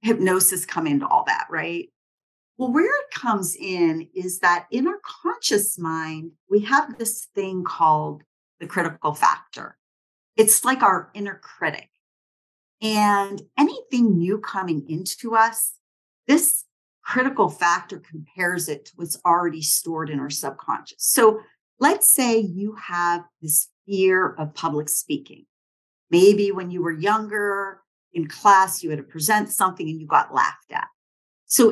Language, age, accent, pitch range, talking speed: English, 50-69, American, 160-240 Hz, 145 wpm